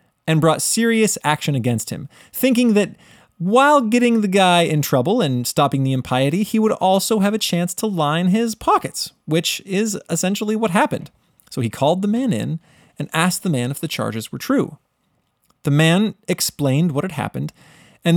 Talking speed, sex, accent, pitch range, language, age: 180 wpm, male, American, 130-180 Hz, English, 20-39